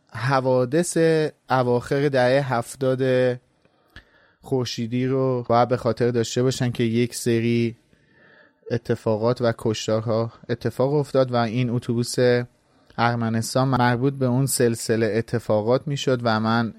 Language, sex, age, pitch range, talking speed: Persian, male, 30-49, 115-140 Hz, 110 wpm